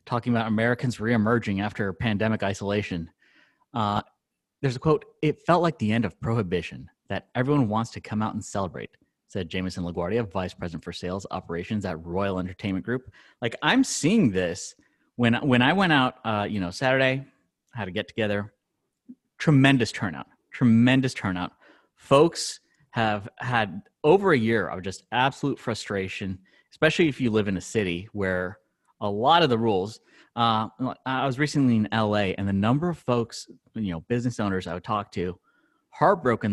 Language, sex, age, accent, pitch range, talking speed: English, male, 30-49, American, 95-125 Hz, 170 wpm